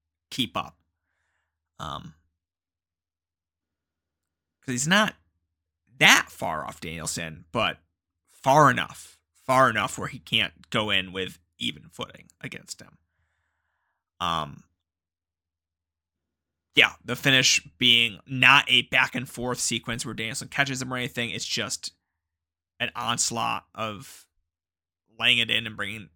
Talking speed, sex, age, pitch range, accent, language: 120 wpm, male, 20-39, 80-120 Hz, American, English